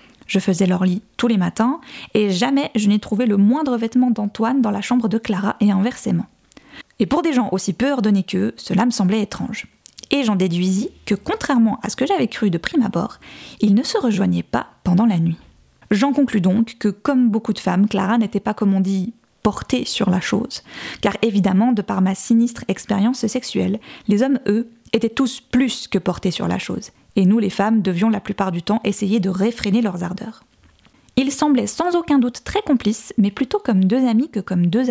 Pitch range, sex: 195-245 Hz, female